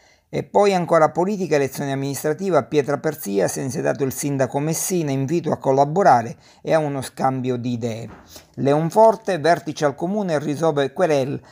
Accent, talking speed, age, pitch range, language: native, 155 wpm, 50-69, 130-155 Hz, Italian